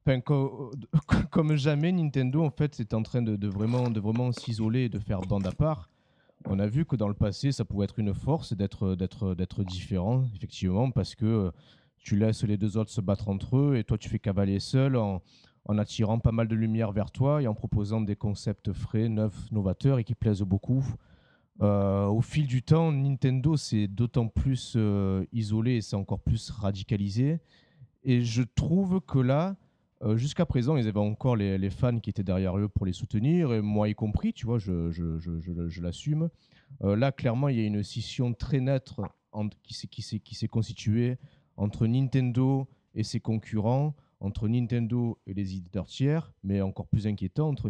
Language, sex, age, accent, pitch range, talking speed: French, male, 30-49, French, 105-135 Hz, 200 wpm